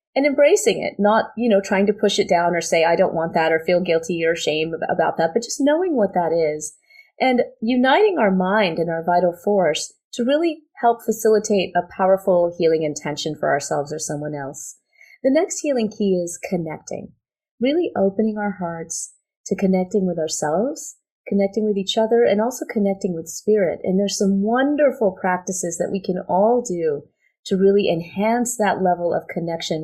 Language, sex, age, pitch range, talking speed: English, female, 30-49, 170-235 Hz, 185 wpm